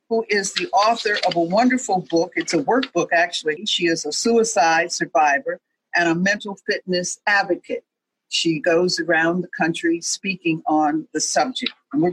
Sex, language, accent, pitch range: female, English, American, 170-240 Hz